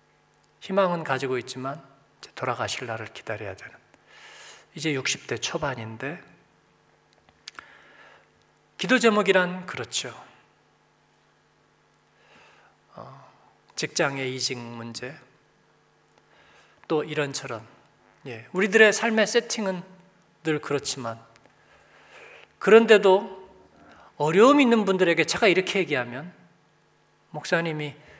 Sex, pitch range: male, 150-215 Hz